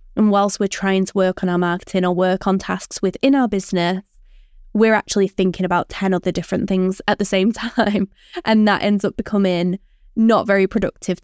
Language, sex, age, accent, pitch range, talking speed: English, female, 20-39, British, 190-225 Hz, 190 wpm